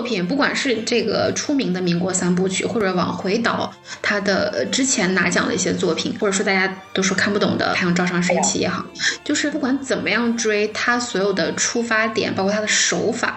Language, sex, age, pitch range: Chinese, female, 10-29, 185-235 Hz